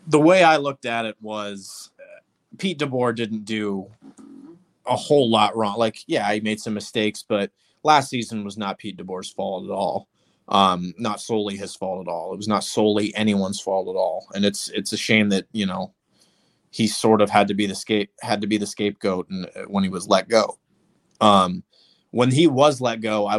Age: 20-39